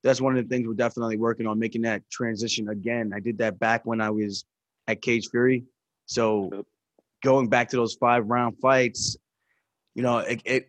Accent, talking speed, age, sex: American, 190 wpm, 20-39, male